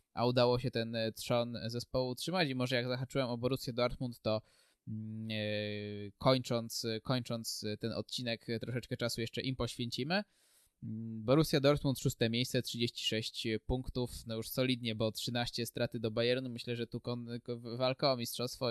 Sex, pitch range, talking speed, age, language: male, 115-130 Hz, 150 wpm, 20-39, Polish